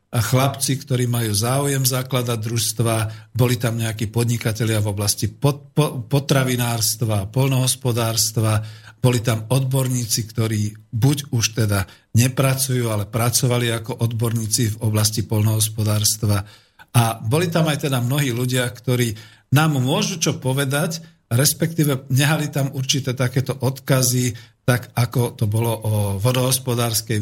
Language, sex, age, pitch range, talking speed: Slovak, male, 50-69, 110-135 Hz, 120 wpm